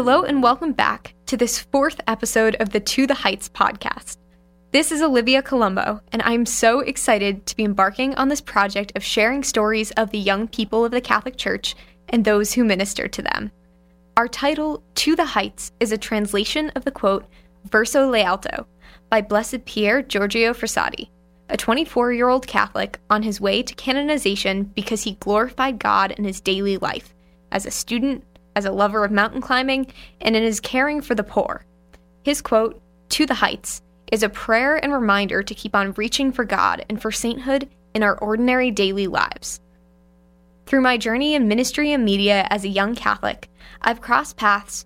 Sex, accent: female, American